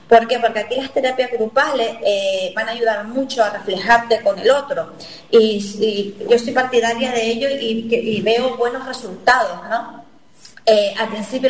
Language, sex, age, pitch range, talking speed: Spanish, female, 20-39, 205-245 Hz, 185 wpm